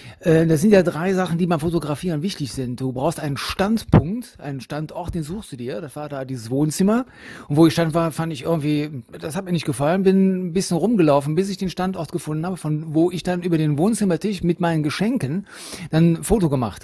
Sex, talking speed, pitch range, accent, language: male, 220 wpm, 150-185 Hz, German, German